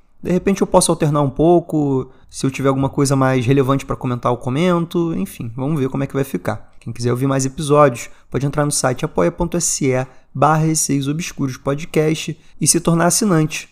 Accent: Brazilian